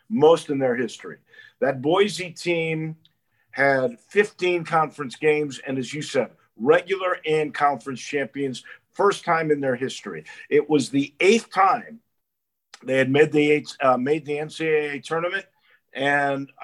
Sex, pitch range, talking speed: male, 130-170 Hz, 145 wpm